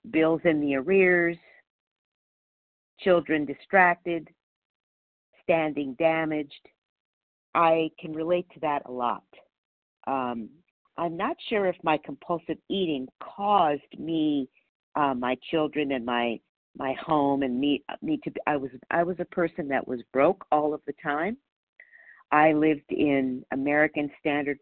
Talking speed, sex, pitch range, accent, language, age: 130 wpm, female, 140-170 Hz, American, English, 50-69